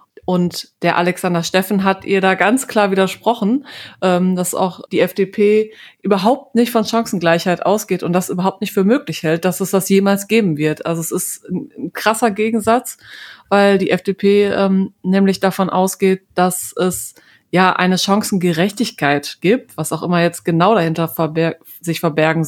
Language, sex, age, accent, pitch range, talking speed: German, female, 30-49, German, 180-200 Hz, 160 wpm